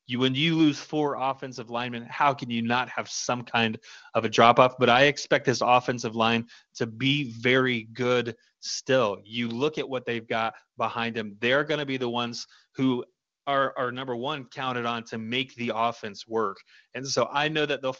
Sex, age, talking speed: male, 30-49, 195 wpm